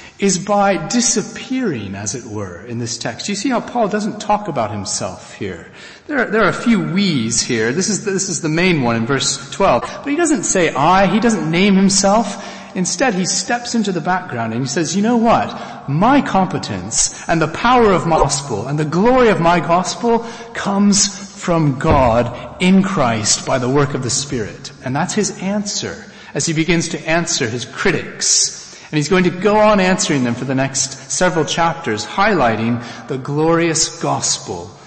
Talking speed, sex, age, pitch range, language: 185 wpm, male, 40-59, 145-210 Hz, English